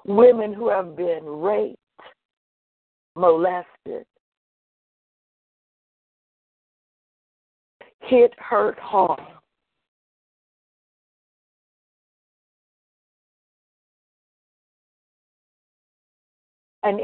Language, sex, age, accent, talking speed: English, female, 50-69, American, 35 wpm